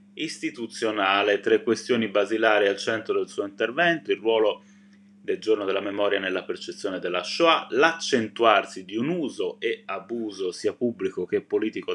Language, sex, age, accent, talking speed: Italian, male, 20-39, native, 145 wpm